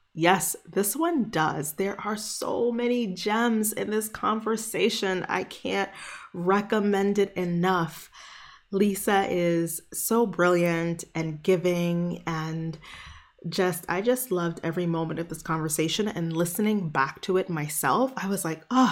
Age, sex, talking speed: 20-39, female, 135 wpm